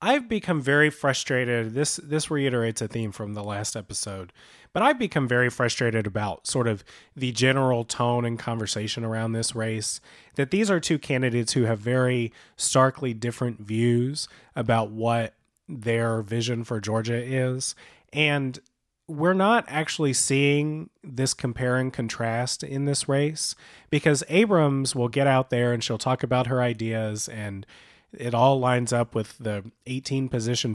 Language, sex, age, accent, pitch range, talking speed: English, male, 30-49, American, 115-145 Hz, 155 wpm